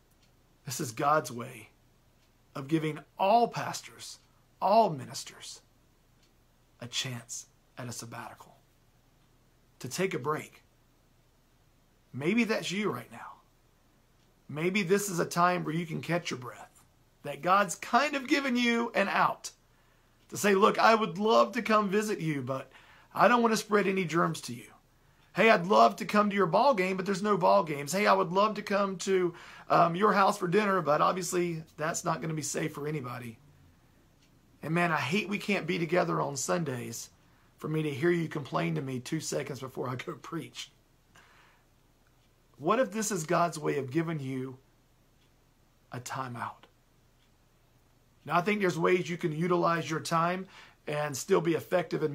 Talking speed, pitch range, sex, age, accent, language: 170 wpm, 130-190 Hz, male, 40-59, American, English